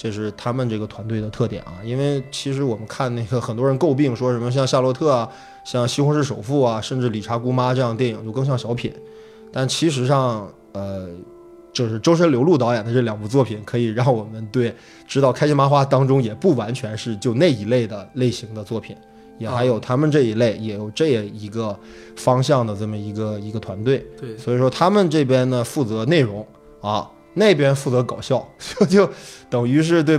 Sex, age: male, 20-39